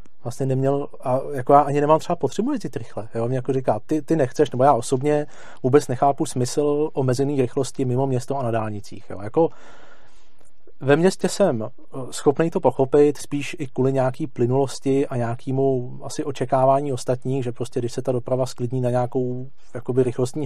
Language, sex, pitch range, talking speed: Czech, male, 125-140 Hz, 175 wpm